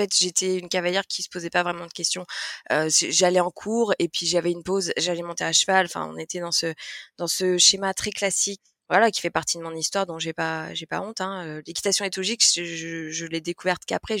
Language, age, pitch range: French, 20-39, 170-195 Hz